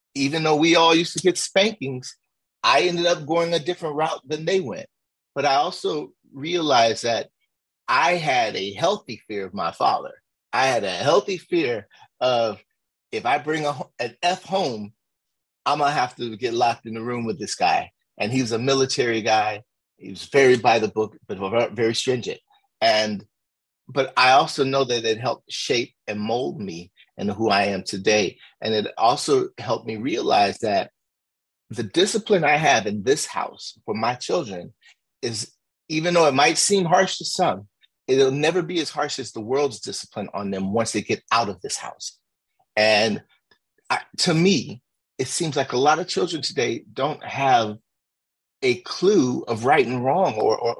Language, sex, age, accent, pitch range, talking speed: English, male, 30-49, American, 110-175 Hz, 185 wpm